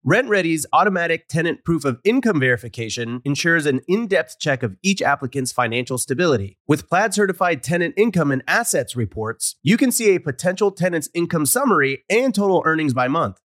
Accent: American